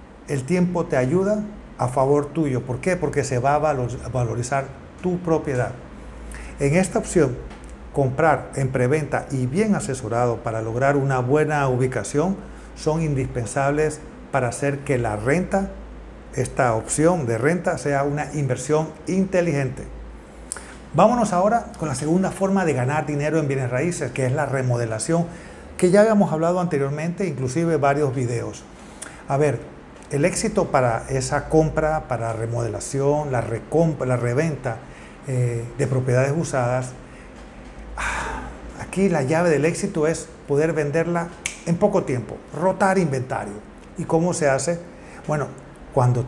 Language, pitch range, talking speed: Spanish, 130-170 Hz, 135 wpm